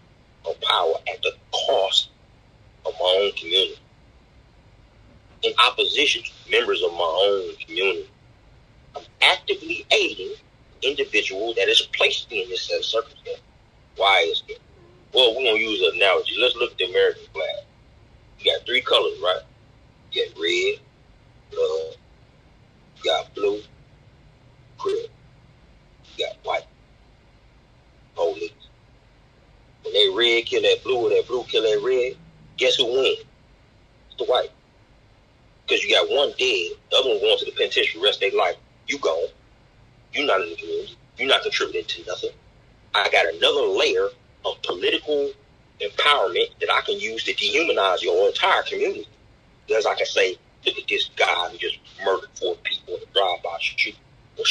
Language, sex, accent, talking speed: English, male, American, 155 wpm